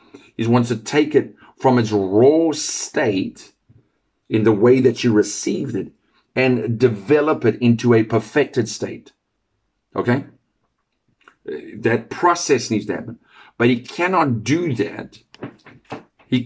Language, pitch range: English, 115-145 Hz